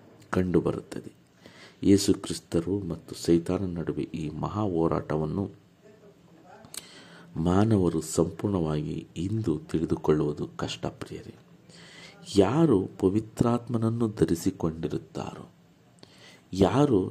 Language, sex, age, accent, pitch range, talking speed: Kannada, male, 50-69, native, 80-105 Hz, 60 wpm